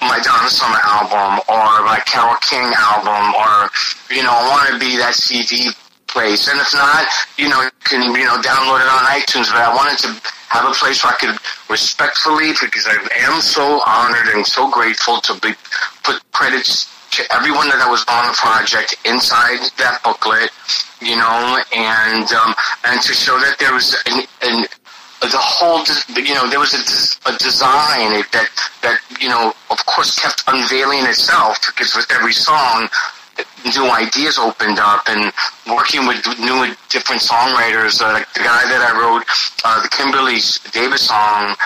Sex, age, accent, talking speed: male, 30-49, American, 175 wpm